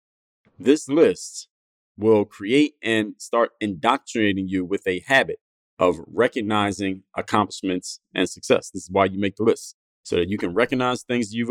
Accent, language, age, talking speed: American, English, 30-49, 155 wpm